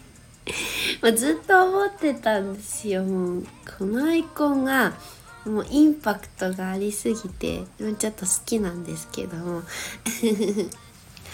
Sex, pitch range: female, 185-235 Hz